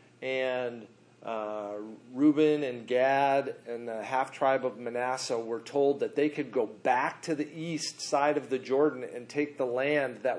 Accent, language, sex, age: American, English, male, 40-59